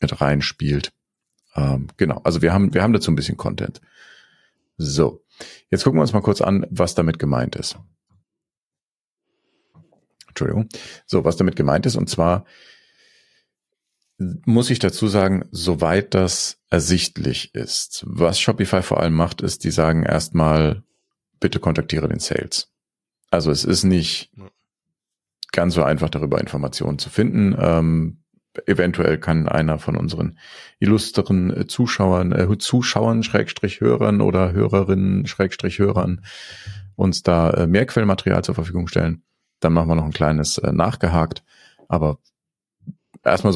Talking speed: 130 wpm